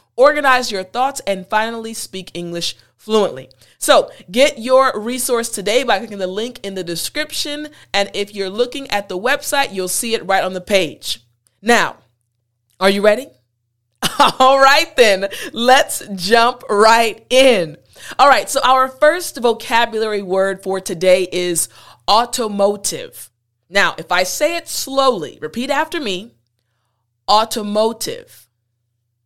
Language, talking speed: English, 135 wpm